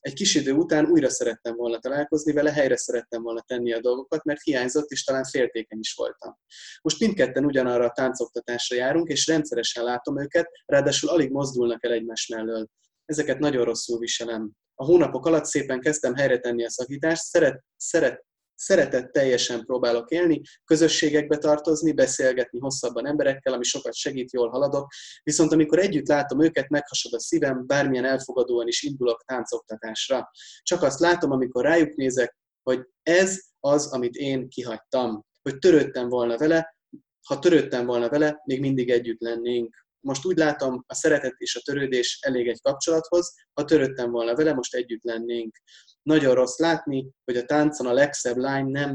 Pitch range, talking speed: 120-150 Hz, 160 wpm